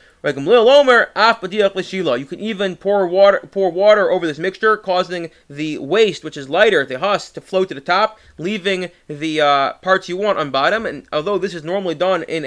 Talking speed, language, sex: 185 wpm, English, male